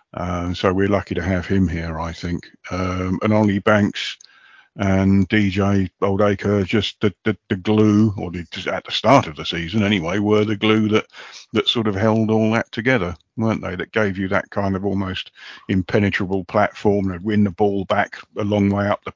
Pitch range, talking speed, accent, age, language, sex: 95-105 Hz, 200 wpm, British, 50-69, English, male